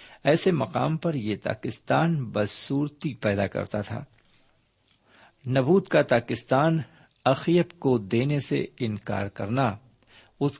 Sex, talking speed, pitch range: male, 115 wpm, 110-140 Hz